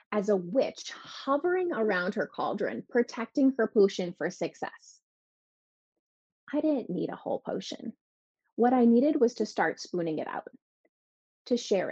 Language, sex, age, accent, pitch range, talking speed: English, female, 30-49, American, 195-245 Hz, 145 wpm